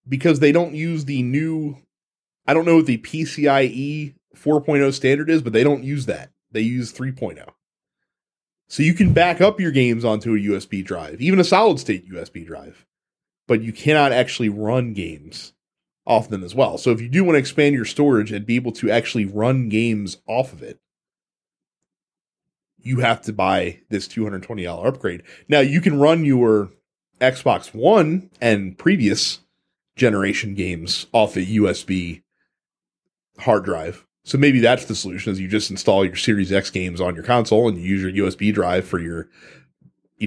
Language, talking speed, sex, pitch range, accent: English, 175 wpm, male, 105-150 Hz, American